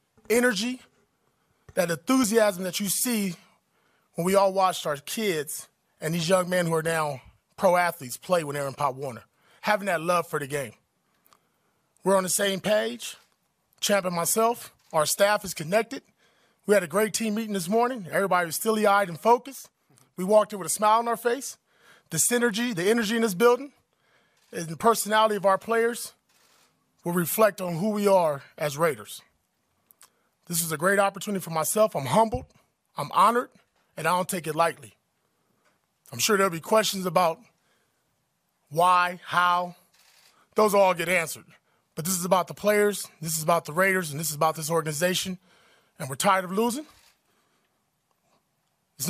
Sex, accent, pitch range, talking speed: male, American, 165-220 Hz, 170 wpm